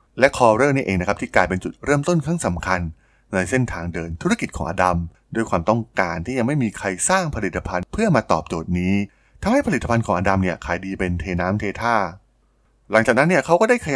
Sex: male